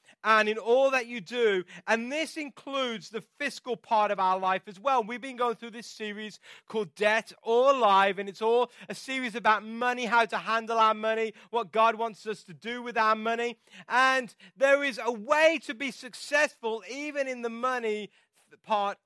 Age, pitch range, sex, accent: 30-49, 210-260 Hz, male, British